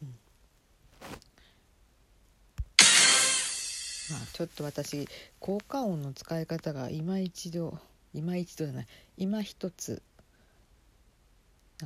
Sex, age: female, 50-69